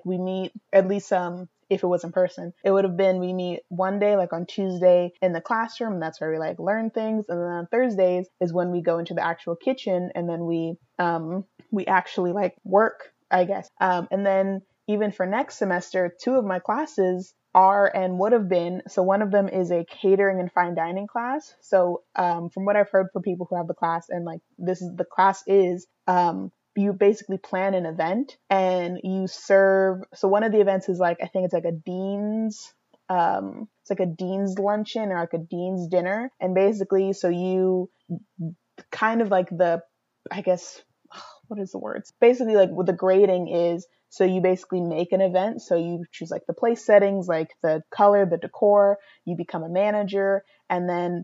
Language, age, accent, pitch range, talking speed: English, 20-39, American, 175-200 Hz, 205 wpm